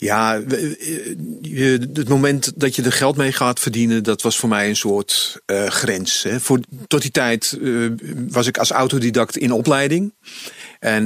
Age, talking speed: 40-59, 155 wpm